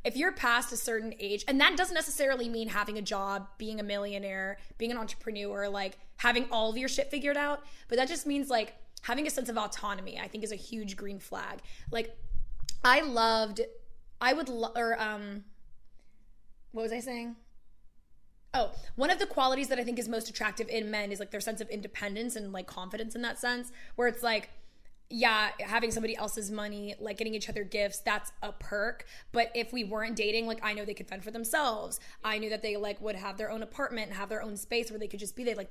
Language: English